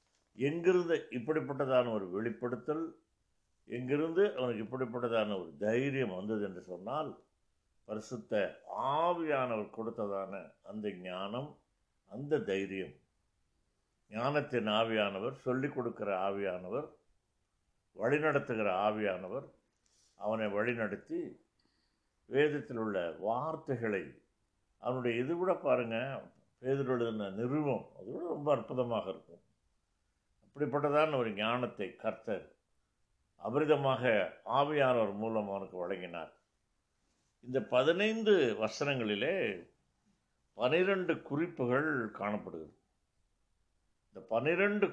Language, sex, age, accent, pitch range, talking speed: Tamil, male, 60-79, native, 105-145 Hz, 75 wpm